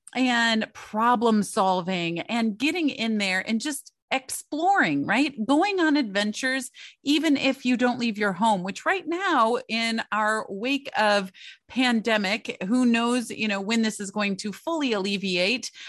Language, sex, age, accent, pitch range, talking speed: English, female, 30-49, American, 195-250 Hz, 150 wpm